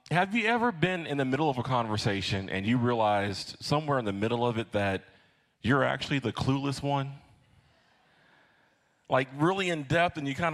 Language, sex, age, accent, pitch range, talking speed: English, male, 30-49, American, 110-145 Hz, 180 wpm